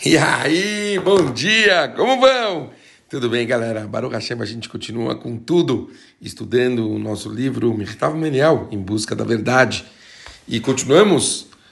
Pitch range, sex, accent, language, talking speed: 110-140 Hz, male, Brazilian, Portuguese, 145 wpm